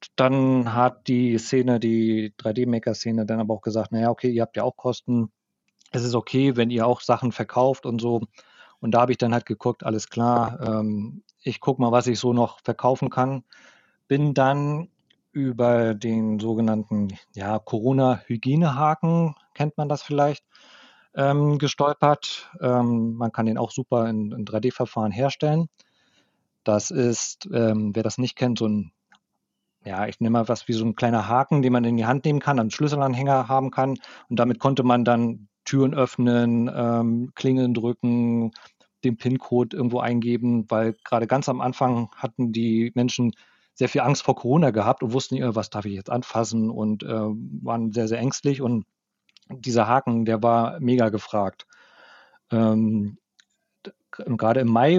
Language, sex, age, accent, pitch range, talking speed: German, male, 40-59, German, 115-130 Hz, 165 wpm